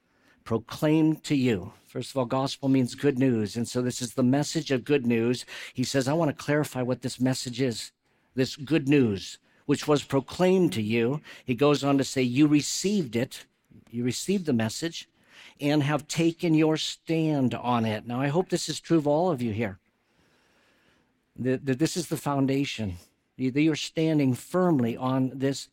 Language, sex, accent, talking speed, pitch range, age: English, male, American, 175 wpm, 125-155 Hz, 50-69